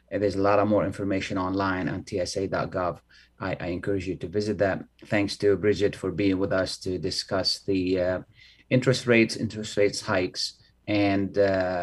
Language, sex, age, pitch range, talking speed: Arabic, male, 30-49, 95-110 Hz, 170 wpm